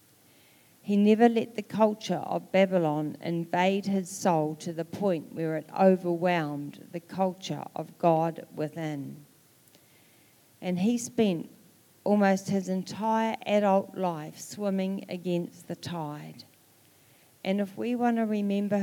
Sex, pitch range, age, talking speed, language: female, 165-205 Hz, 40-59, 125 wpm, English